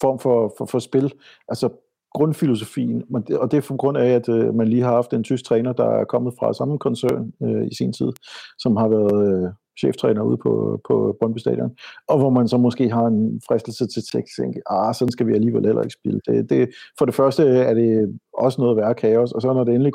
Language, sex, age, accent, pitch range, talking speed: Danish, male, 50-69, native, 110-130 Hz, 235 wpm